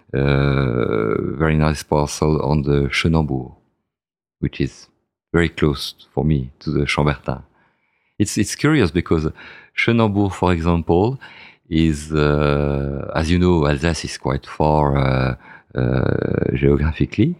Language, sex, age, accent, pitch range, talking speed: English, male, 50-69, French, 70-85 Hz, 120 wpm